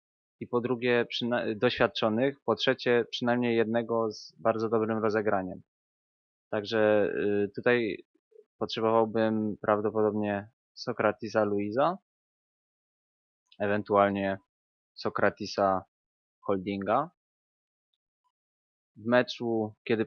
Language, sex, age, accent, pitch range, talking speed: Polish, male, 20-39, native, 100-115 Hz, 70 wpm